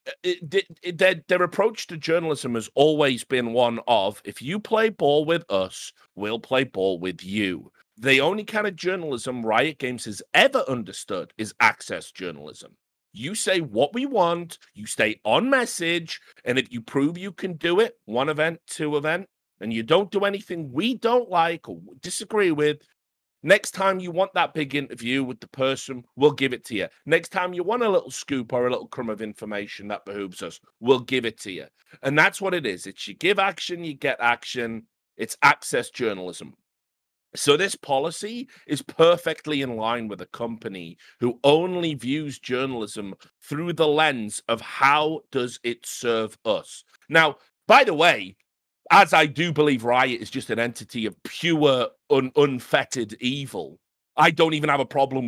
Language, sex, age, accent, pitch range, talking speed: English, male, 40-59, British, 115-170 Hz, 175 wpm